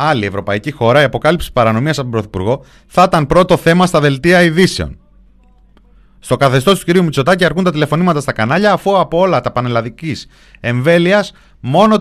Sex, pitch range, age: male, 100-145 Hz, 30-49